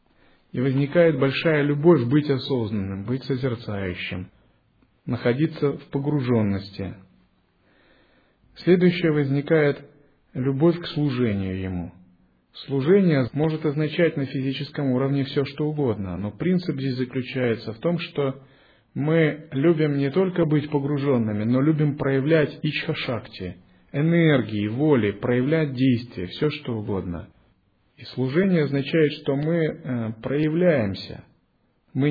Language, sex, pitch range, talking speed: Russian, male, 115-150 Hz, 105 wpm